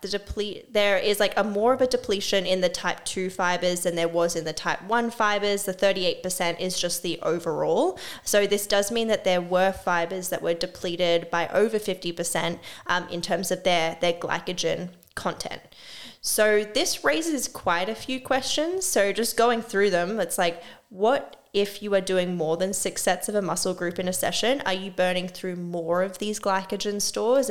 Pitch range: 175-205 Hz